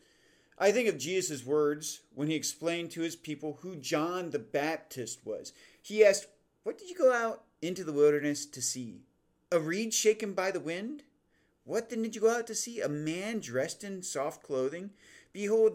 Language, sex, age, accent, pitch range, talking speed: English, male, 40-59, American, 145-215 Hz, 185 wpm